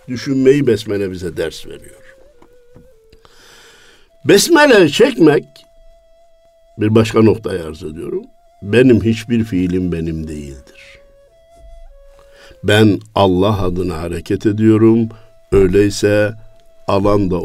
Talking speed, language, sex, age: 85 wpm, Turkish, male, 60-79